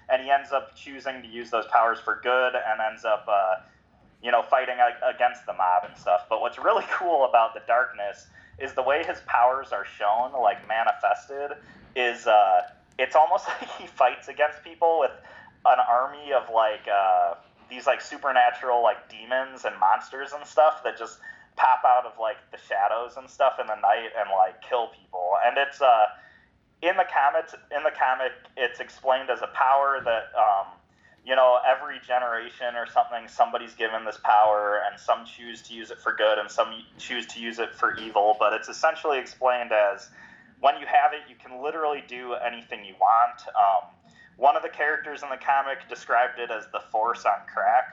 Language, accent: English, American